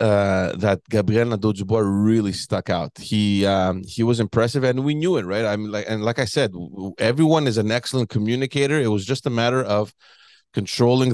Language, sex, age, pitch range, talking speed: English, male, 30-49, 100-120 Hz, 195 wpm